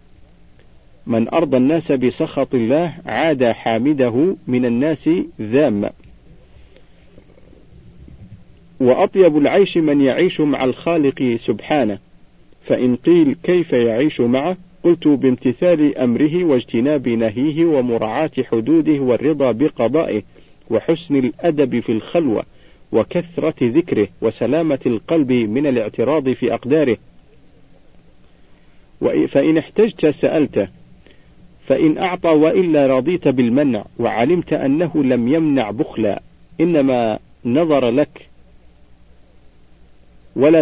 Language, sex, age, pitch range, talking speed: Arabic, male, 50-69, 115-160 Hz, 90 wpm